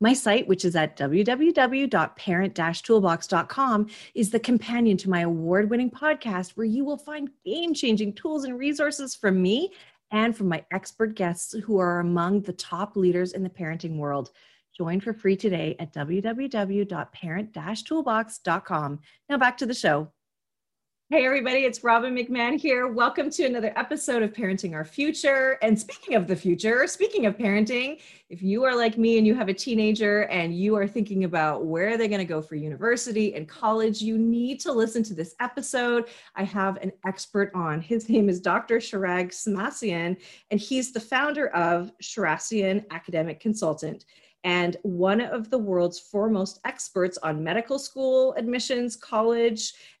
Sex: female